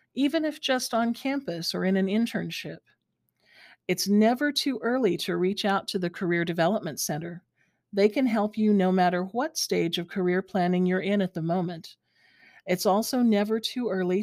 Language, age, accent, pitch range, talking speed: English, 50-69, American, 180-230 Hz, 175 wpm